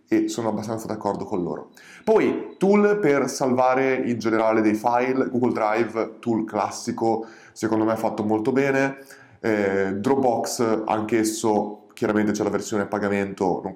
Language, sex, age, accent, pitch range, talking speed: Italian, male, 20-39, native, 105-125 Hz, 140 wpm